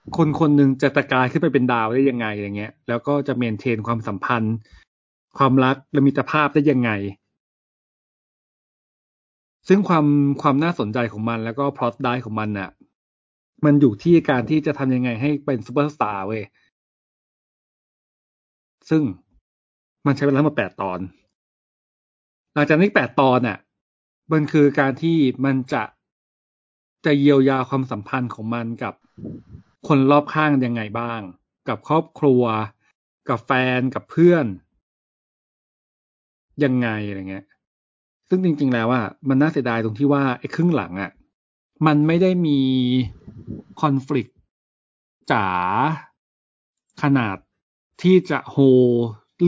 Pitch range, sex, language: 105-145 Hz, male, Thai